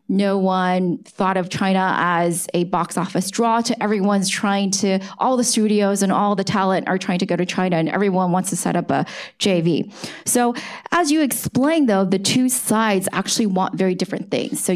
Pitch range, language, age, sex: 185-230 Hz, English, 20-39, female